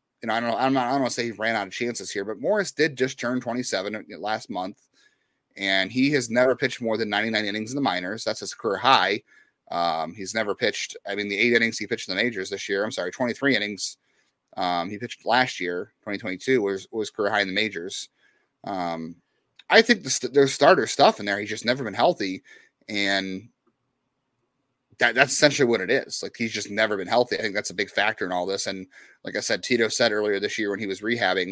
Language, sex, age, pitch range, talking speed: English, male, 30-49, 100-135 Hz, 240 wpm